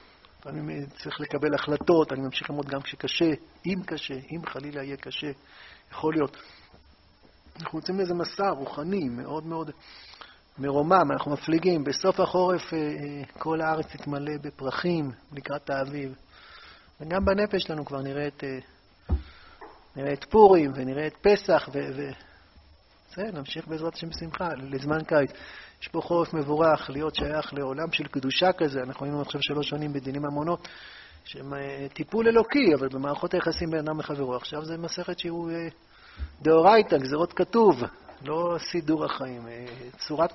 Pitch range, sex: 140-165 Hz, male